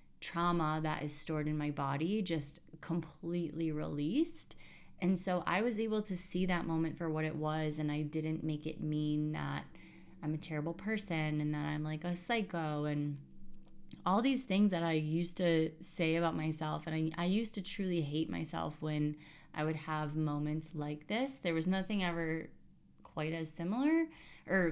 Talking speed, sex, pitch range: 180 wpm, female, 155-190 Hz